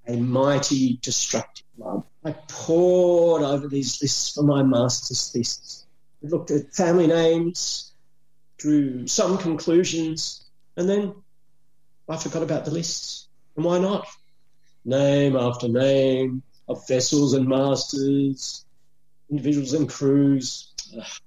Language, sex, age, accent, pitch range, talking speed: English, male, 40-59, Australian, 130-155 Hz, 120 wpm